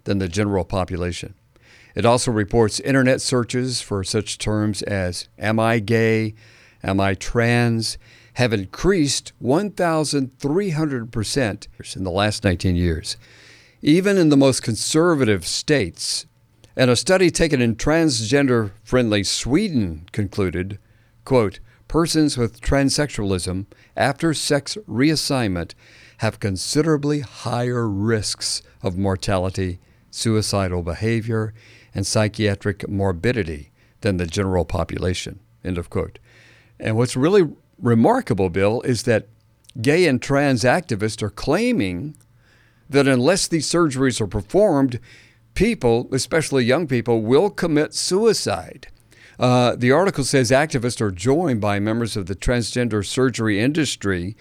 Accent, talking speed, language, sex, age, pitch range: American, 120 wpm, English, male, 50-69, 105-130 Hz